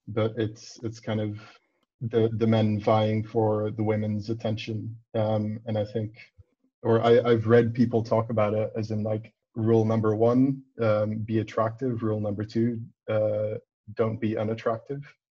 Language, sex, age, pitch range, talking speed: English, male, 20-39, 105-115 Hz, 160 wpm